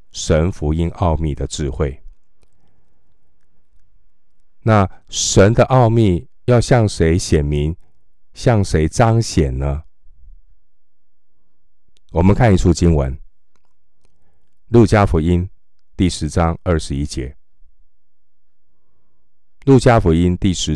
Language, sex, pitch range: Chinese, male, 70-90 Hz